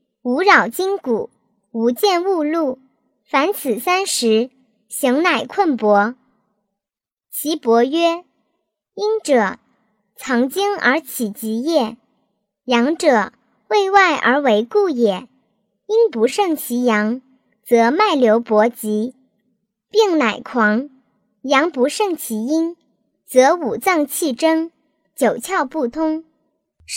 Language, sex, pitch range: Chinese, male, 225-325 Hz